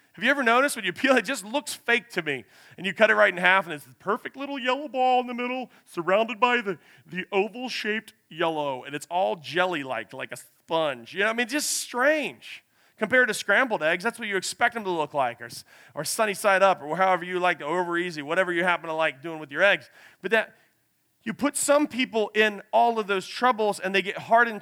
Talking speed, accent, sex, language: 240 wpm, American, male, English